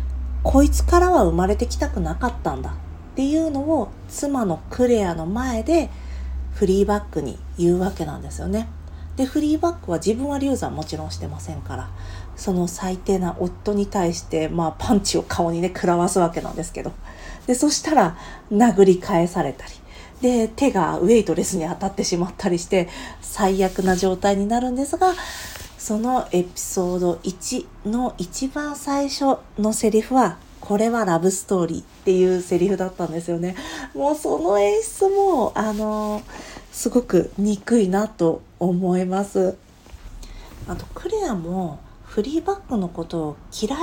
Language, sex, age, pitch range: Japanese, female, 40-59, 170-230 Hz